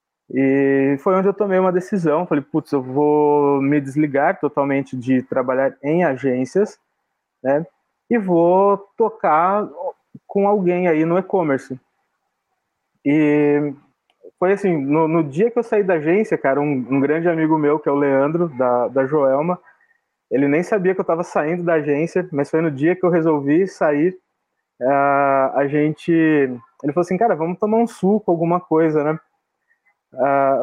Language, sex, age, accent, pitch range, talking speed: Portuguese, male, 20-39, Brazilian, 145-195 Hz, 165 wpm